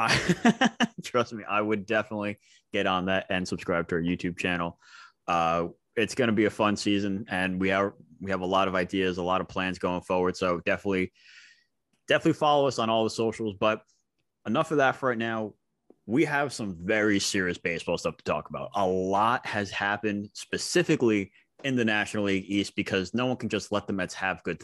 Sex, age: male, 20-39